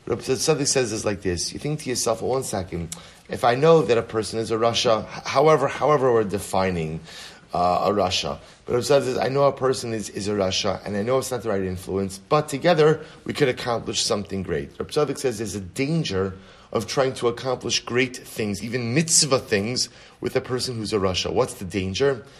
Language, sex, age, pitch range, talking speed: English, male, 30-49, 100-140 Hz, 215 wpm